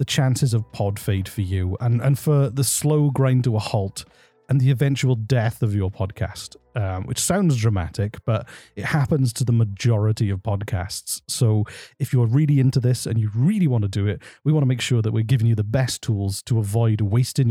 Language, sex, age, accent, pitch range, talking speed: English, male, 40-59, British, 100-130 Hz, 215 wpm